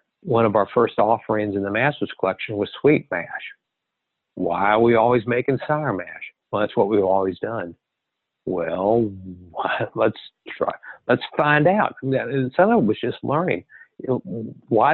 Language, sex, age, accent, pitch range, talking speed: English, male, 60-79, American, 100-130 Hz, 155 wpm